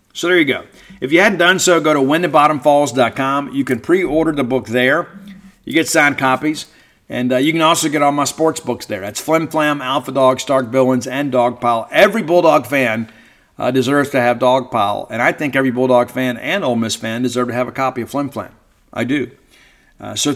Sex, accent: male, American